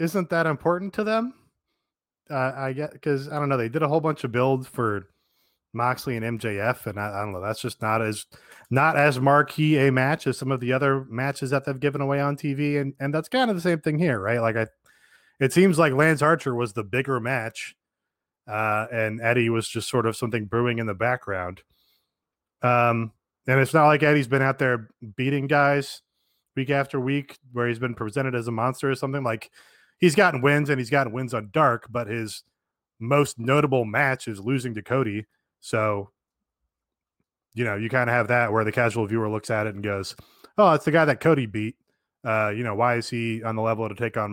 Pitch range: 115-145 Hz